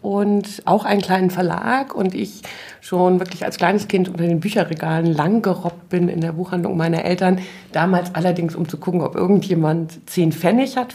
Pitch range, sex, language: 165-205 Hz, female, German